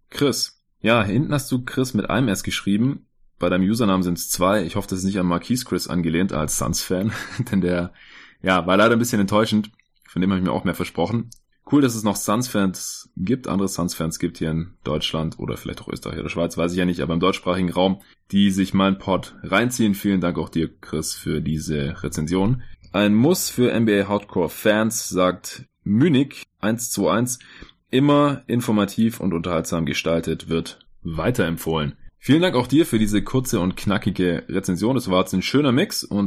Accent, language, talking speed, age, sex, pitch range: German, German, 190 wpm, 20-39, male, 85-105 Hz